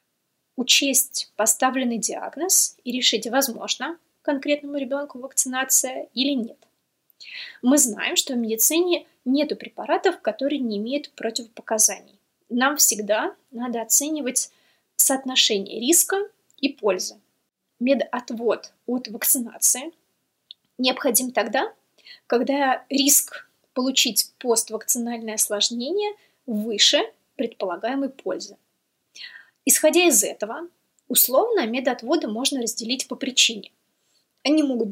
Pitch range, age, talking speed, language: 230-300 Hz, 20-39, 95 wpm, Russian